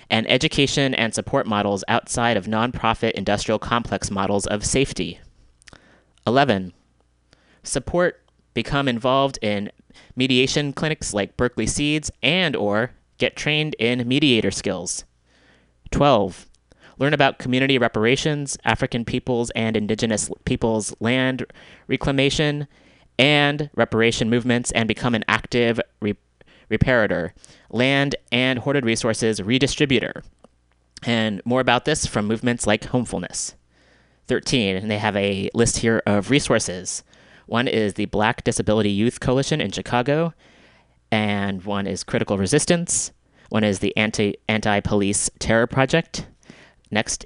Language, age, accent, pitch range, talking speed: English, 30-49, American, 105-130 Hz, 120 wpm